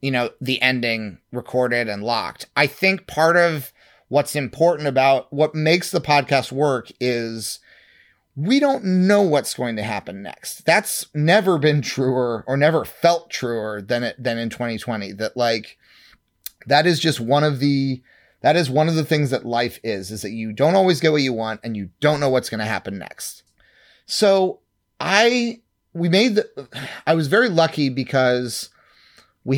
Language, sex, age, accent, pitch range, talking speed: English, male, 30-49, American, 120-160 Hz, 175 wpm